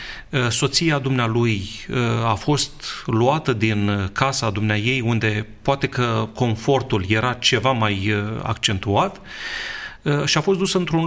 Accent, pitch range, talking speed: native, 115-165 Hz, 120 wpm